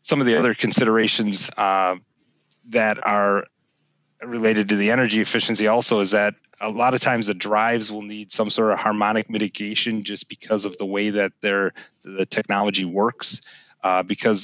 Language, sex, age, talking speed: English, male, 30-49, 165 wpm